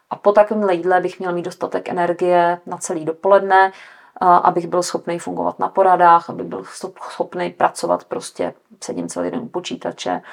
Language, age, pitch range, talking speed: Czech, 40-59, 160-180 Hz, 165 wpm